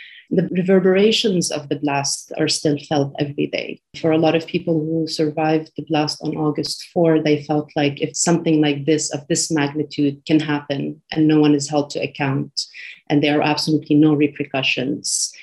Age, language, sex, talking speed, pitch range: 30-49, English, female, 185 wpm, 145-165 Hz